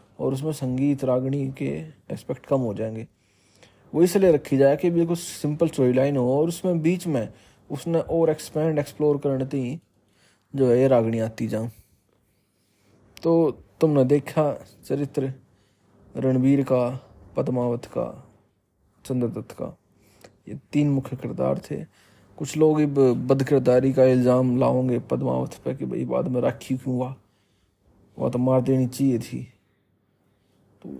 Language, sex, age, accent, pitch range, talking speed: Hindi, male, 20-39, native, 100-135 Hz, 135 wpm